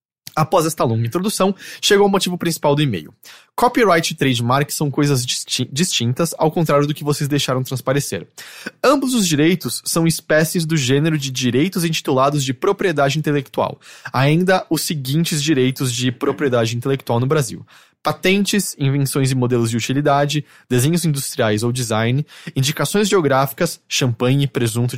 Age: 20-39